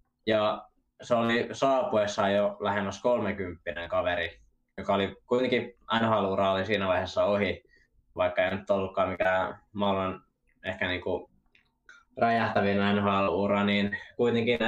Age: 20-39